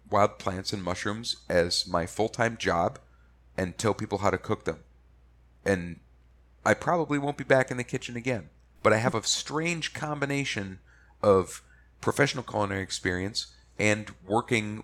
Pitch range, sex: 80-110 Hz, male